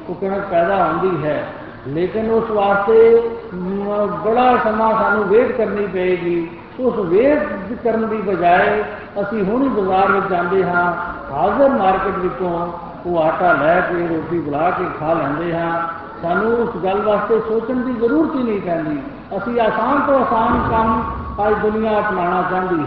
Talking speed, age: 140 wpm, 60-79